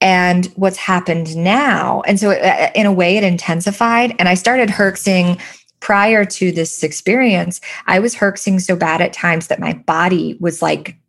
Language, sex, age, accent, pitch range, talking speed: English, female, 20-39, American, 165-200 Hz, 170 wpm